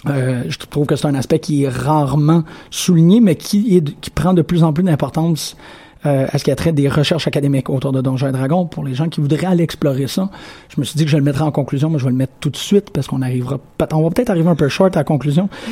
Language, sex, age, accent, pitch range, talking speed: French, male, 30-49, Canadian, 140-165 Hz, 280 wpm